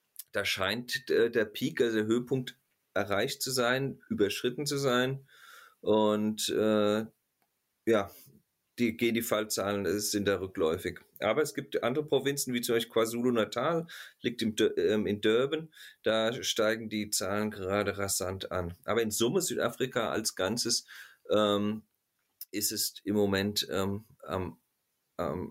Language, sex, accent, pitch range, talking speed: German, male, German, 105-125 Hz, 135 wpm